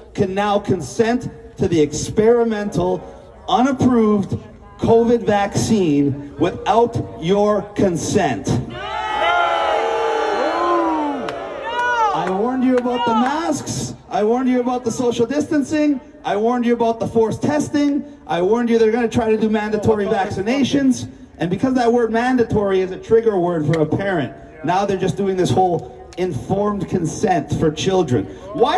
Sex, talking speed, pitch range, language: male, 140 wpm, 200-265 Hz, English